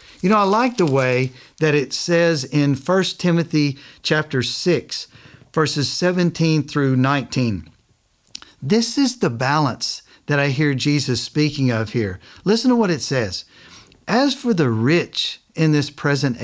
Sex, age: male, 50-69